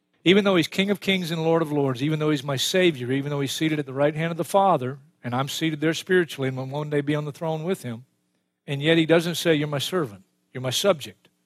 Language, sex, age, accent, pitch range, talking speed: English, male, 50-69, American, 125-180 Hz, 270 wpm